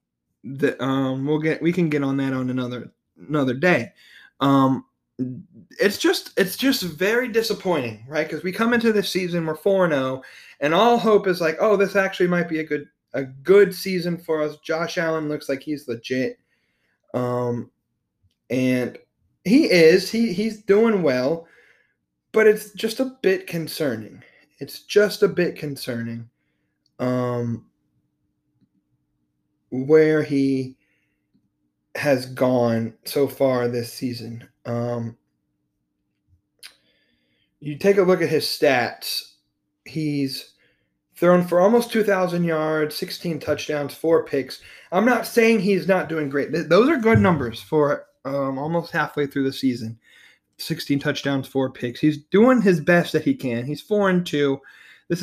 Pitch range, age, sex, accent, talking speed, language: 130-185 Hz, 20-39, male, American, 140 wpm, English